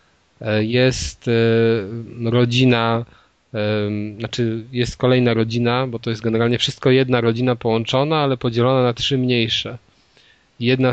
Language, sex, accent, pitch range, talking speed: Polish, male, native, 110-125 Hz, 110 wpm